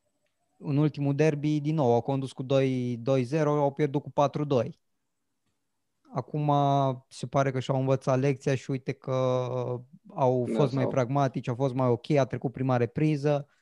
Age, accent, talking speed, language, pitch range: 20-39, native, 155 wpm, Romanian, 115-140 Hz